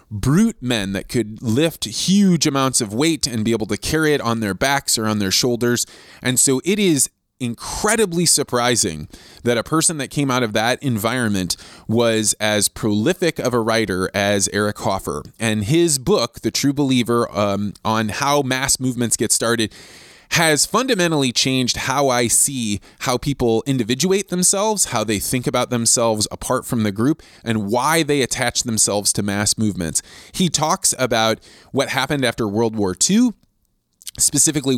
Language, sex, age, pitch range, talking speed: English, male, 20-39, 110-145 Hz, 165 wpm